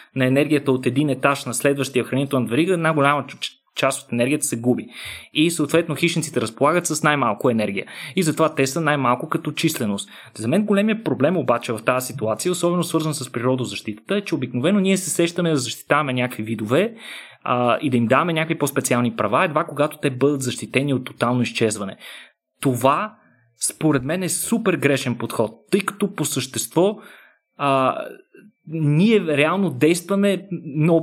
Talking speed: 160 wpm